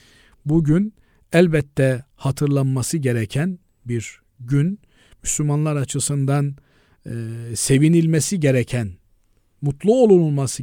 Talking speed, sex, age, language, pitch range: 75 wpm, male, 50-69, Turkish, 125-155 Hz